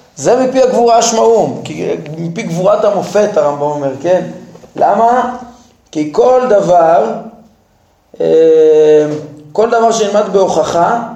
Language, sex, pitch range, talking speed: Hebrew, male, 160-230 Hz, 95 wpm